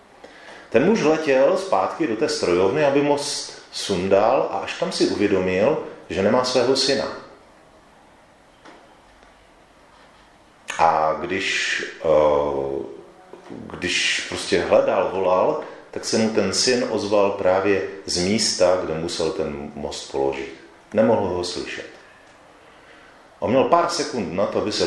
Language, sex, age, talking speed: Czech, male, 40-59, 120 wpm